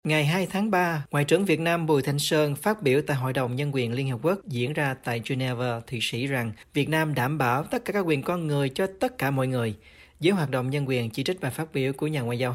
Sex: male